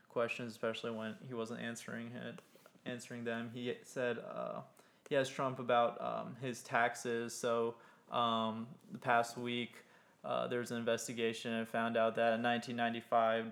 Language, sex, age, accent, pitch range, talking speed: English, male, 20-39, American, 115-120 Hz, 150 wpm